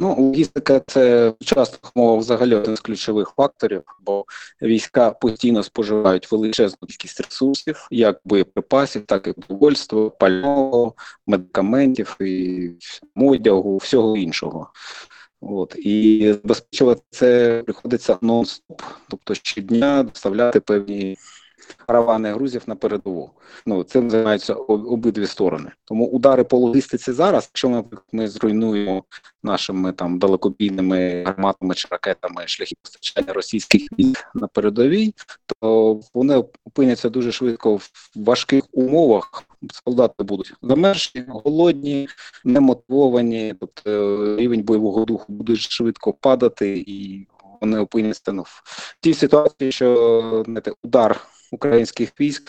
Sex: male